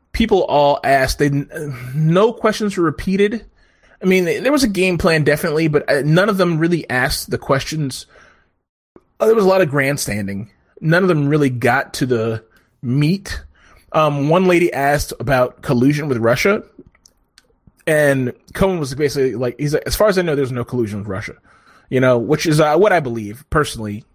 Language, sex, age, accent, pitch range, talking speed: English, male, 30-49, American, 110-150 Hz, 180 wpm